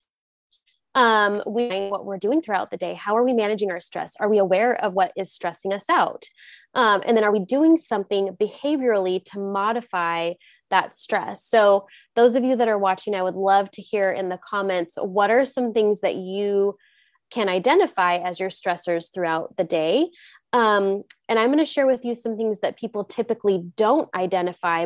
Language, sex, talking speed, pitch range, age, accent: English, female, 190 wpm, 185-230 Hz, 20-39, American